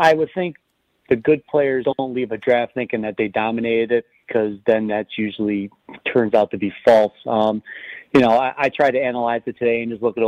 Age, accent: 40-59, American